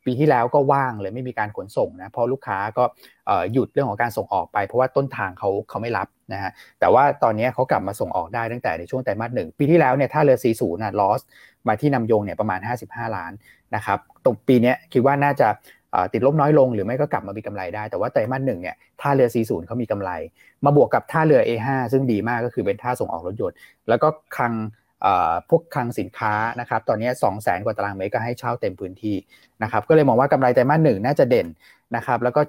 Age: 30-49